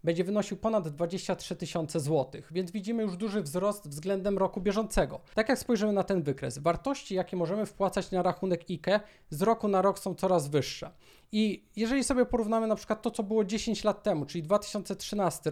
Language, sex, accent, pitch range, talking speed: Polish, male, native, 175-215 Hz, 185 wpm